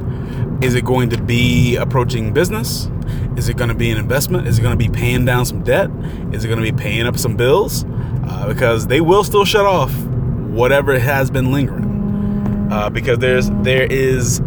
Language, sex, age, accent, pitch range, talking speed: English, male, 30-49, American, 115-130 Hz, 200 wpm